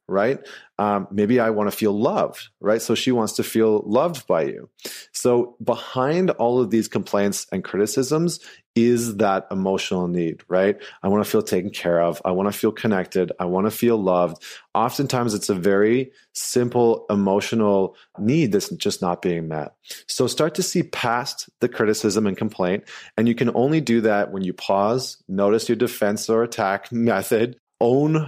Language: English